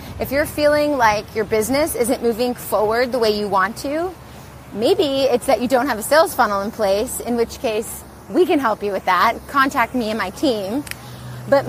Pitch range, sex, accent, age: 220-275 Hz, female, American, 20-39